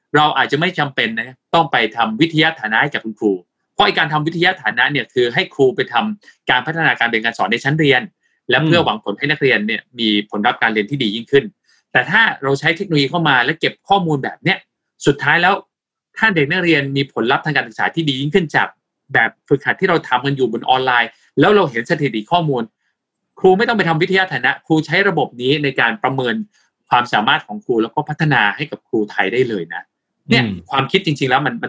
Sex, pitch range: male, 110-155 Hz